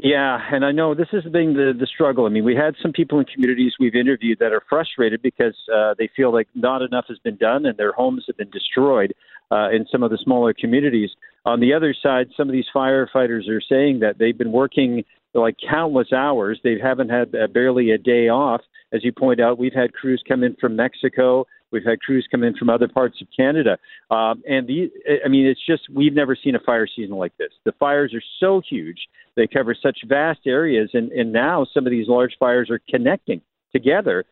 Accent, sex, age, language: American, male, 50-69, English